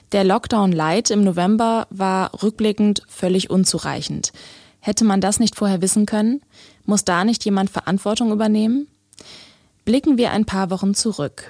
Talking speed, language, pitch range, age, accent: 140 wpm, German, 185-220 Hz, 20-39, German